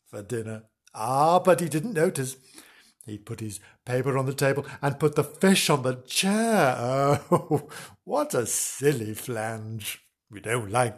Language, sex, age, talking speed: English, male, 60-79, 155 wpm